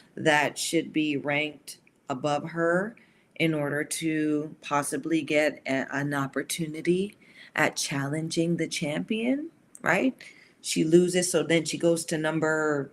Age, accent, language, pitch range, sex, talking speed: 40-59, American, English, 150-190 Hz, female, 120 wpm